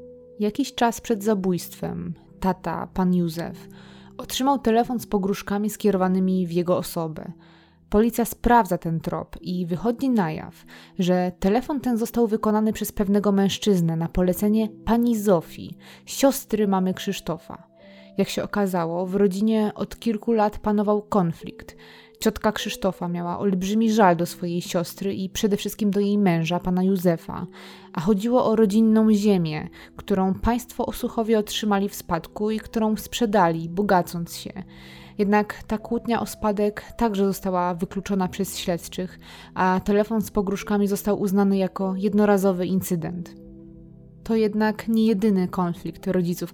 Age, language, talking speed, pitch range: 20-39, Polish, 135 wpm, 180-215 Hz